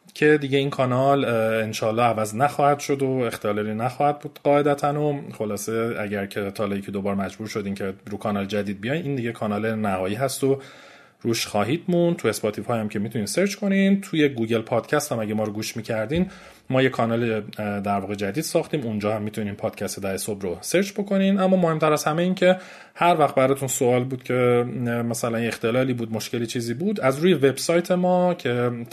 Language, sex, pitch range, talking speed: Persian, male, 110-155 Hz, 190 wpm